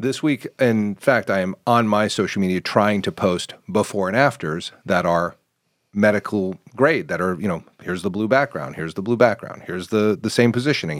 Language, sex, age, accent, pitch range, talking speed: English, male, 40-59, American, 100-125 Hz, 200 wpm